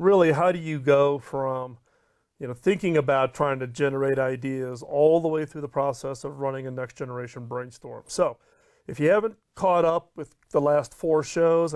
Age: 40-59